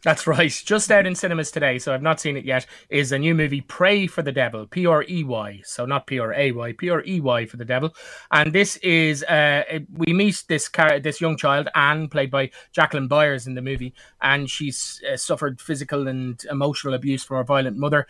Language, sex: English, male